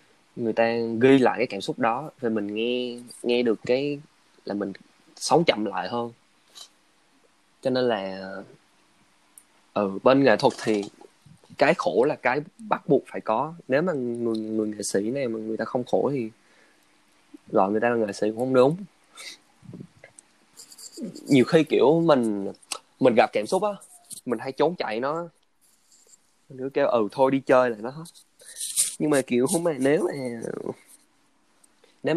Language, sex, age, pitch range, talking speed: Vietnamese, male, 20-39, 105-140 Hz, 170 wpm